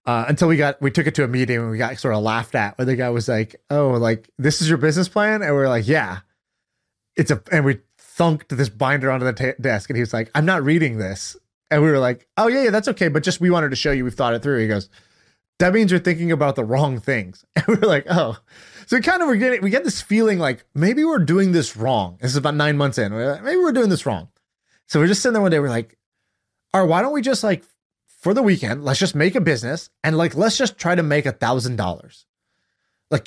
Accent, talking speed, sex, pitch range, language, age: American, 275 wpm, male, 125-175 Hz, English, 20-39